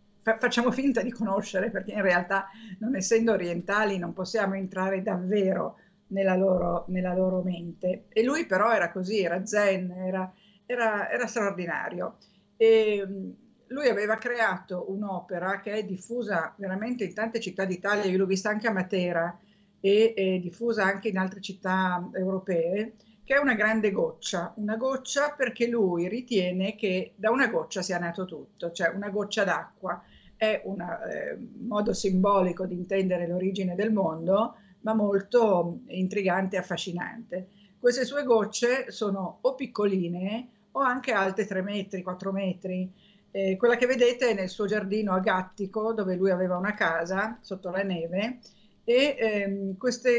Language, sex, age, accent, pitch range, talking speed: Italian, female, 50-69, native, 185-225 Hz, 145 wpm